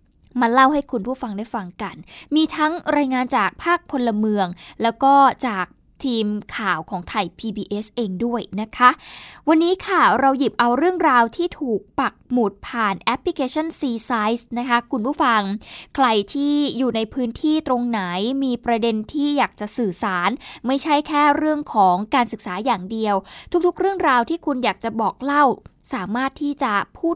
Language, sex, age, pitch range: Thai, female, 20-39, 215-275 Hz